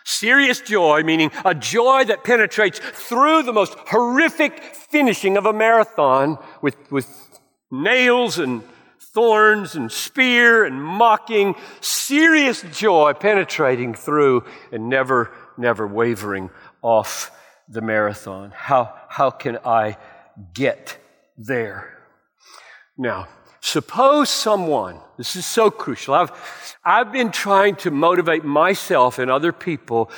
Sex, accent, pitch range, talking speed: male, American, 125-200 Hz, 115 wpm